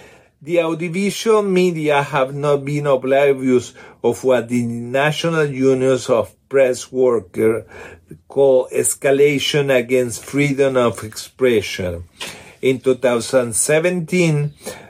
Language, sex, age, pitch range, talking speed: English, male, 50-69, 125-150 Hz, 95 wpm